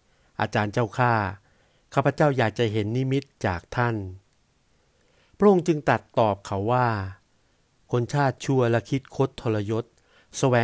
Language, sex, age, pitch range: Thai, male, 60-79, 105-130 Hz